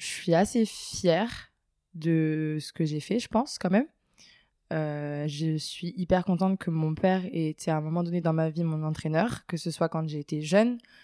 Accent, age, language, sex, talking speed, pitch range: French, 20-39, French, female, 210 wpm, 155-190 Hz